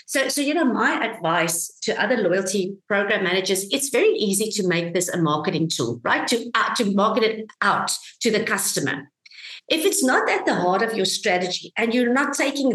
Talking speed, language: 200 wpm, English